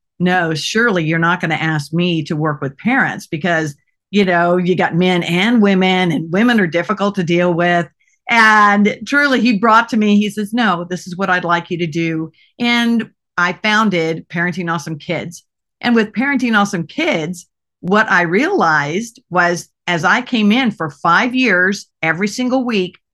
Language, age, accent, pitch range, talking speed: English, 50-69, American, 175-225 Hz, 180 wpm